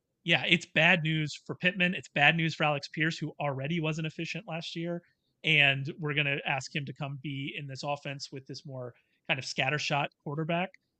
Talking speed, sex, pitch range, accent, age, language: 200 wpm, male, 140-170 Hz, American, 30-49, English